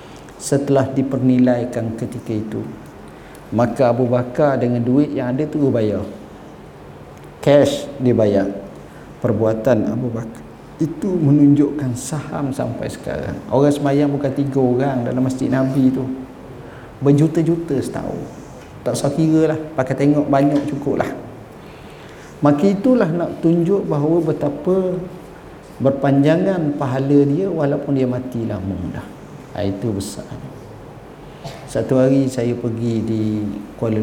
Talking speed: 115 wpm